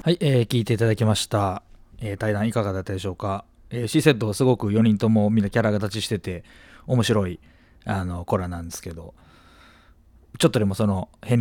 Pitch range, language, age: 95-120 Hz, Japanese, 20-39